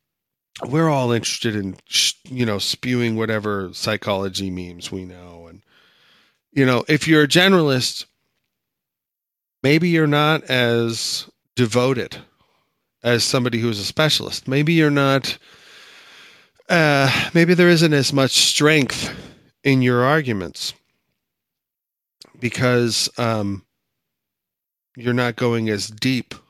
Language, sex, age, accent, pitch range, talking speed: English, male, 30-49, American, 110-135 Hz, 115 wpm